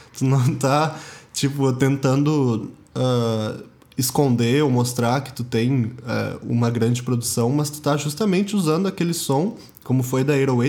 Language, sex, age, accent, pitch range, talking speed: Portuguese, male, 20-39, Brazilian, 120-145 Hz, 150 wpm